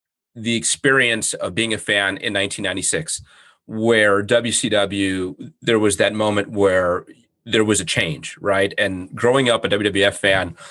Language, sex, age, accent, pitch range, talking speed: English, male, 30-49, American, 100-120 Hz, 145 wpm